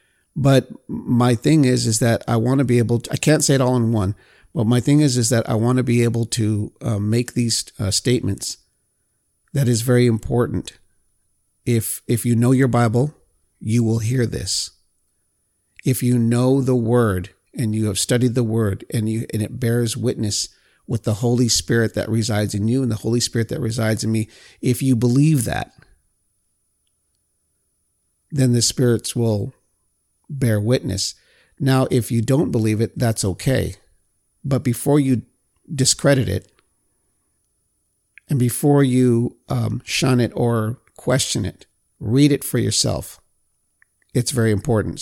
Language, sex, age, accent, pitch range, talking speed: English, male, 50-69, American, 105-125 Hz, 165 wpm